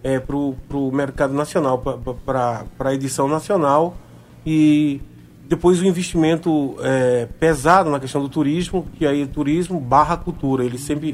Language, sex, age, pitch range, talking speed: Portuguese, male, 40-59, 135-185 Hz, 145 wpm